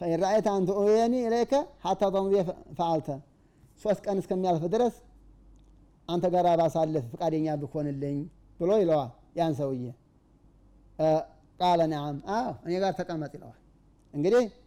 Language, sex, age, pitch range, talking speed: Amharic, male, 30-49, 155-215 Hz, 110 wpm